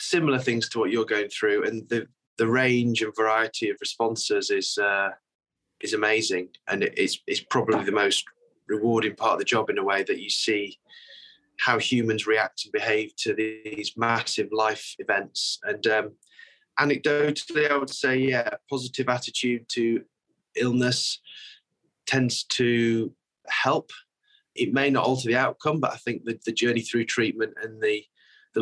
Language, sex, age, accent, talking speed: English, male, 20-39, British, 160 wpm